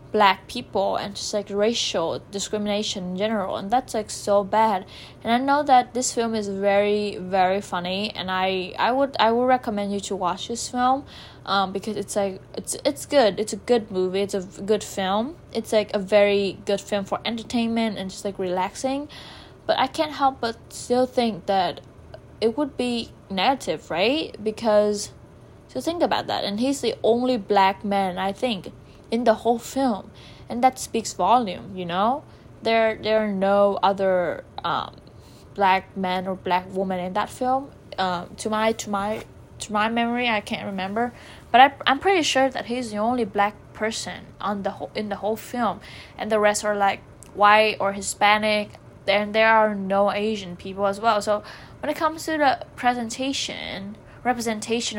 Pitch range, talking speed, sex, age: 195-235 Hz, 180 wpm, female, 10-29